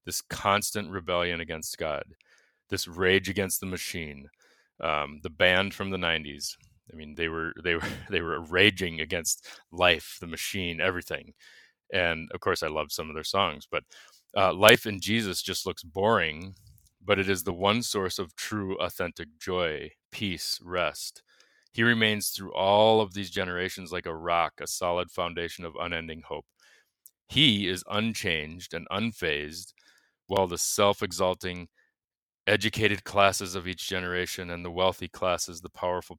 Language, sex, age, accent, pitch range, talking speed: English, male, 30-49, American, 85-100 Hz, 155 wpm